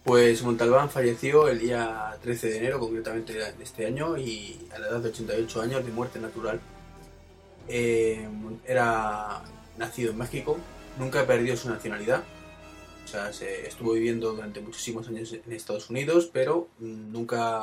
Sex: male